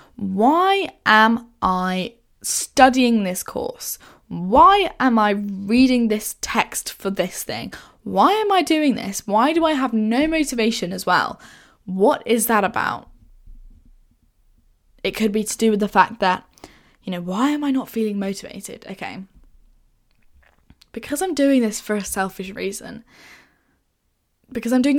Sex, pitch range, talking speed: female, 185-235 Hz, 145 wpm